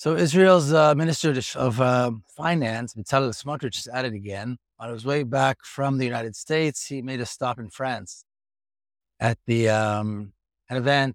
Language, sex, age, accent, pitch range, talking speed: English, male, 60-79, American, 110-130 Hz, 170 wpm